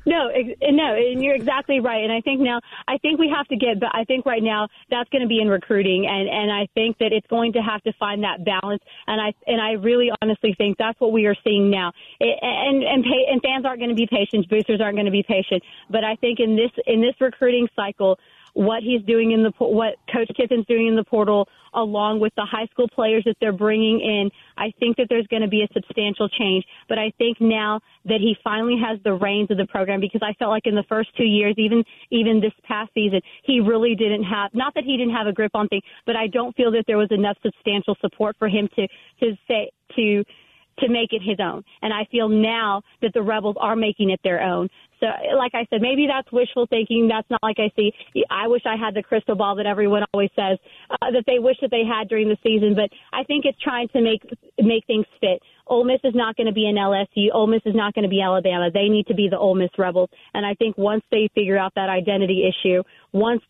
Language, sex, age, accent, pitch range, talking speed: English, female, 30-49, American, 205-235 Hz, 250 wpm